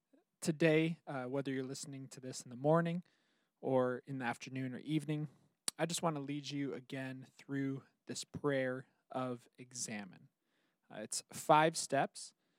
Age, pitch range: 20-39, 130-160 Hz